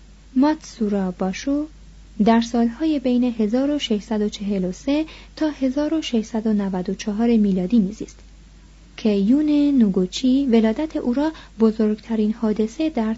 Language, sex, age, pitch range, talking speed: Persian, female, 30-49, 205-255 Hz, 85 wpm